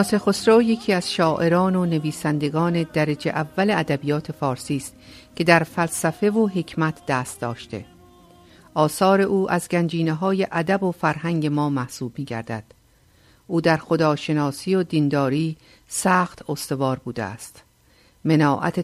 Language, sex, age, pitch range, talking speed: Persian, female, 50-69, 145-180 Hz, 125 wpm